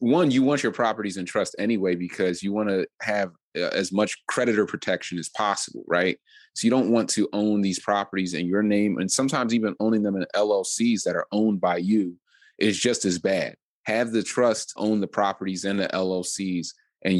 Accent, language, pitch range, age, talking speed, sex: American, English, 90-110 Hz, 30-49, 200 wpm, male